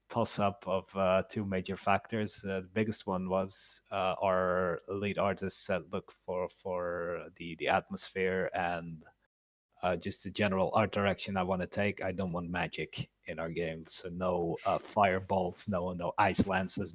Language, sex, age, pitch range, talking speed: English, male, 30-49, 90-100 Hz, 175 wpm